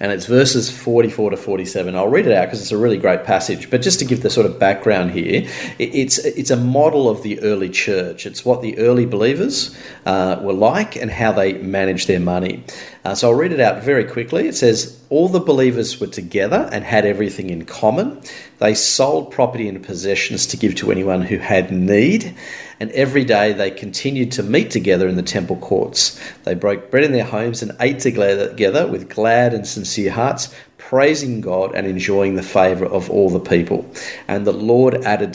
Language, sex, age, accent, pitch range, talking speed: English, male, 40-59, Australian, 95-125 Hz, 200 wpm